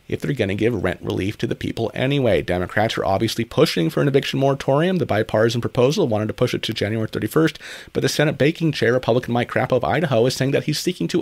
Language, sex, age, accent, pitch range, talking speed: English, male, 30-49, American, 115-160 Hz, 240 wpm